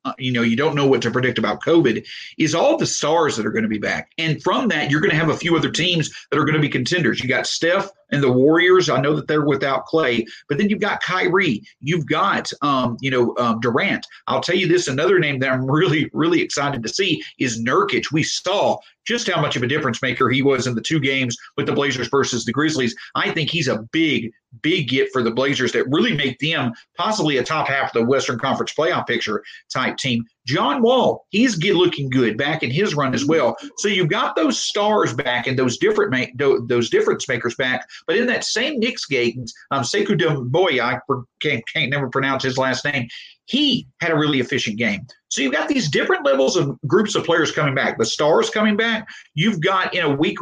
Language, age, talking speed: English, 40-59, 230 wpm